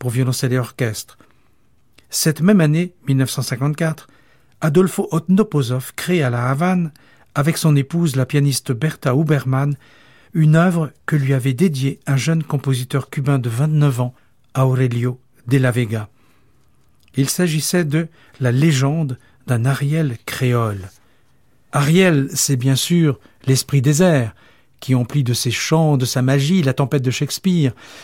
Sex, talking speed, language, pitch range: male, 140 wpm, French, 130-160 Hz